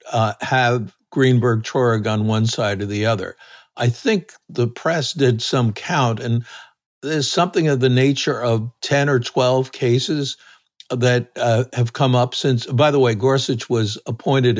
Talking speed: 165 wpm